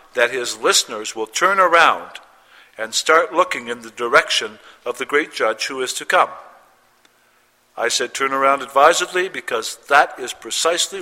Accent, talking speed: American, 160 wpm